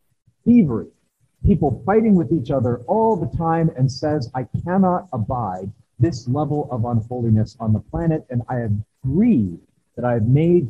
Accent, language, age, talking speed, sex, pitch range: American, English, 50-69, 155 wpm, male, 115-170 Hz